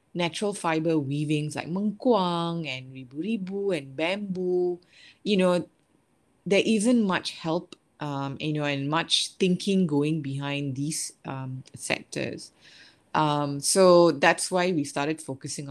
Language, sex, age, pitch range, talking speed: English, female, 20-39, 135-165 Hz, 125 wpm